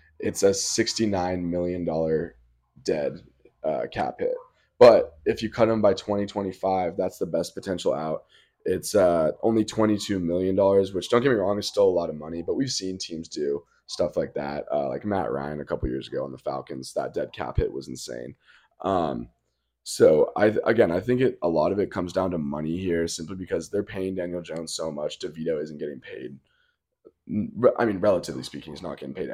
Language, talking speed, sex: English, 195 wpm, male